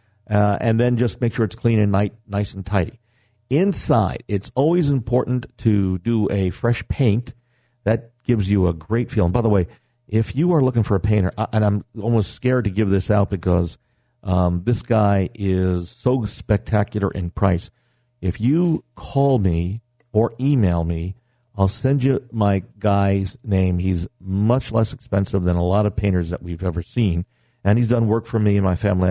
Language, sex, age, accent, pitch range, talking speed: English, male, 50-69, American, 95-120 Hz, 185 wpm